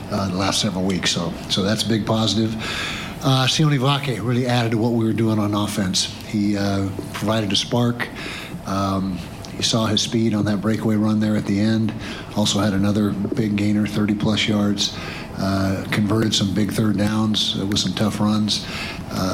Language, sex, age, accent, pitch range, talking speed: English, male, 50-69, American, 100-115 Hz, 185 wpm